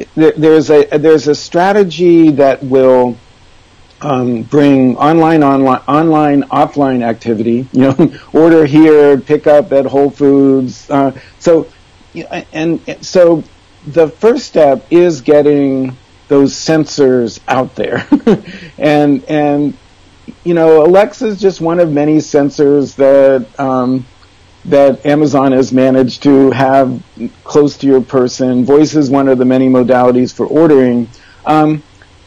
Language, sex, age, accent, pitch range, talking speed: English, male, 50-69, American, 125-155 Hz, 125 wpm